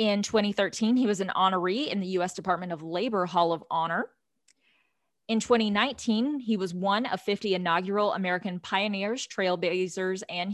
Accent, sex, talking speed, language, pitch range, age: American, female, 155 wpm, English, 175-220 Hz, 20-39